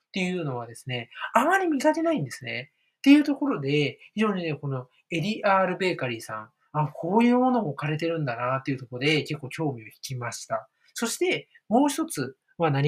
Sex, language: male, Japanese